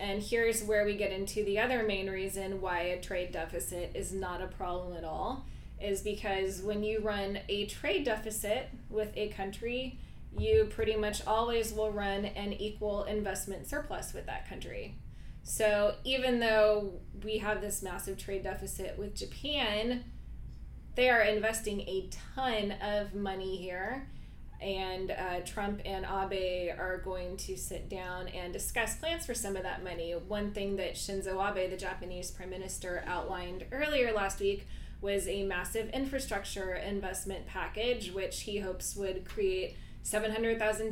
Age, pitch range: 20-39, 185-215 Hz